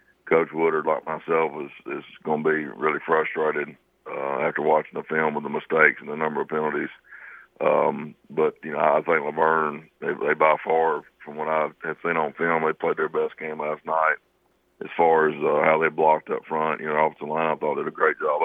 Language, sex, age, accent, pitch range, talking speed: English, male, 60-79, American, 75-80 Hz, 225 wpm